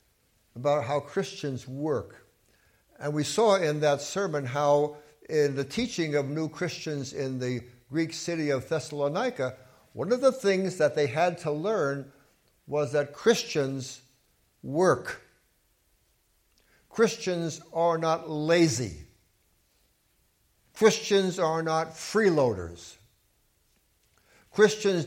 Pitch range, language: 130-175 Hz, English